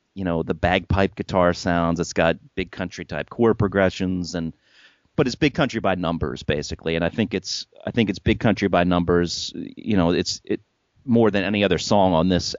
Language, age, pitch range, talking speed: English, 30-49, 85-115 Hz, 205 wpm